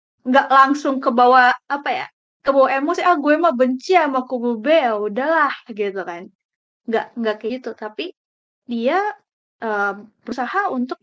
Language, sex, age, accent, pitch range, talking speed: Indonesian, female, 20-39, native, 235-300 Hz, 145 wpm